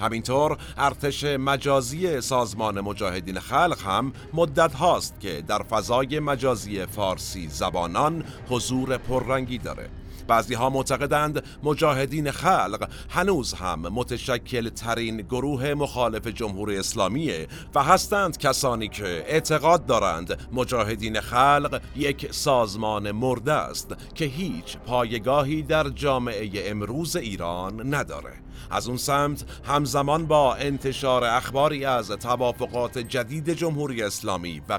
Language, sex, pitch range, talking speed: Persian, male, 110-145 Hz, 110 wpm